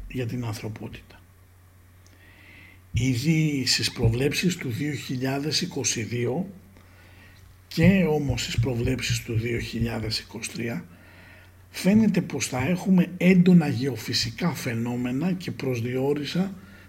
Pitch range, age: 105-150 Hz, 60-79